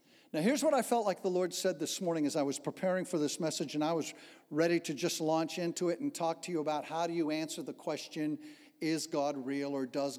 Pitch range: 165-255 Hz